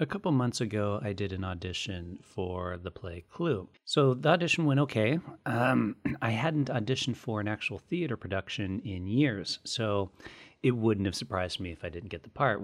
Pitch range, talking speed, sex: 90-110 Hz, 190 wpm, male